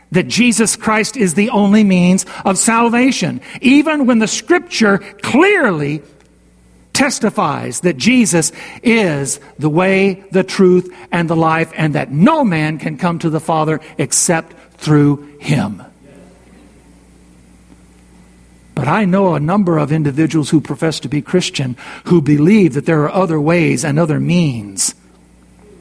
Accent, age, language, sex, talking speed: American, 60-79, English, male, 135 wpm